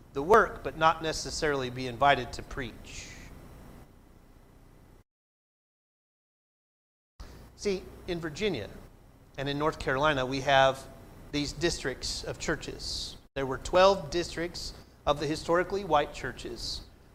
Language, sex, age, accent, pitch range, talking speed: English, male, 40-59, American, 125-170 Hz, 110 wpm